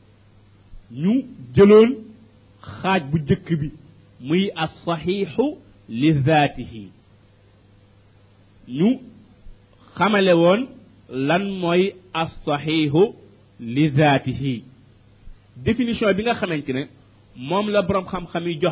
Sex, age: male, 50-69